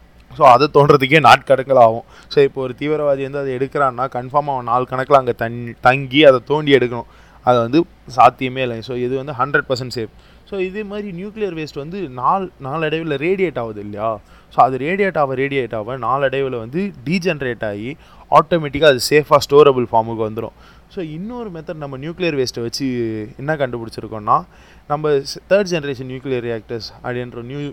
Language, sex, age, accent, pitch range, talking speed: Tamil, male, 20-39, native, 120-155 Hz, 160 wpm